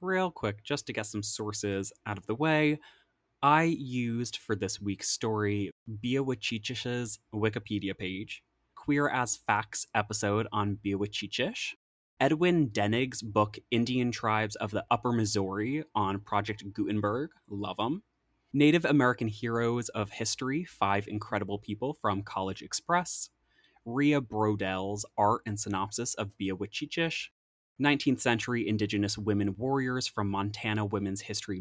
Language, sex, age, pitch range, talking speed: English, male, 20-39, 100-125 Hz, 130 wpm